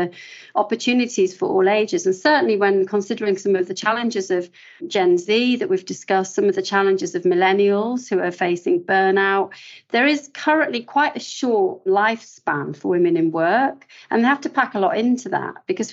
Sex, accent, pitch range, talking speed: female, British, 195-275 Hz, 185 wpm